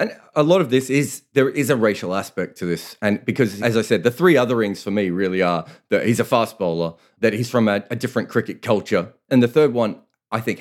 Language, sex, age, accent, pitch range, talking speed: English, male, 30-49, Australian, 105-135 Hz, 255 wpm